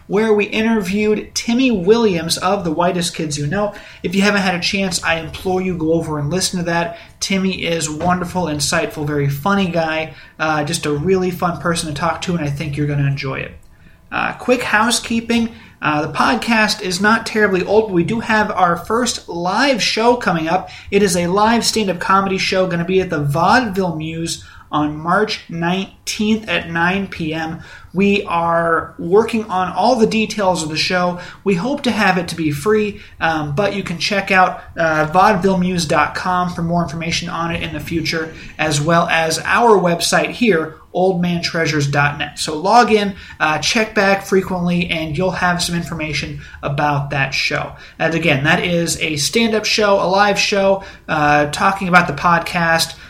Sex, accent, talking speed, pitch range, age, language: male, American, 180 wpm, 160-200 Hz, 30-49, English